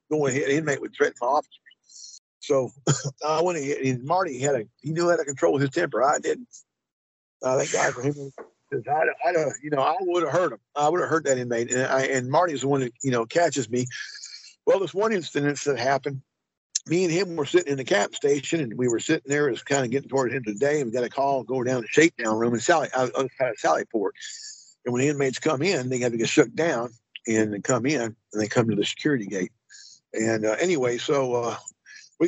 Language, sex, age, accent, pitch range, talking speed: English, male, 50-69, American, 130-170 Hz, 240 wpm